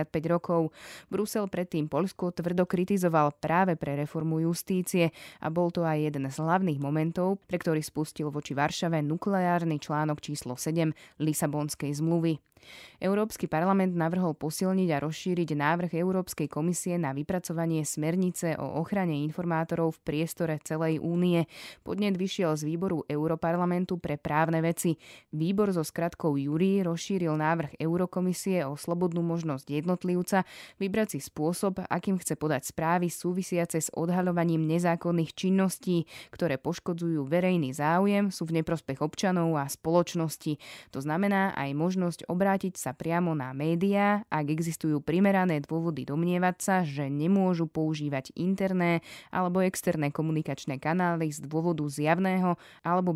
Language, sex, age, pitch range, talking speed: Slovak, female, 20-39, 155-180 Hz, 135 wpm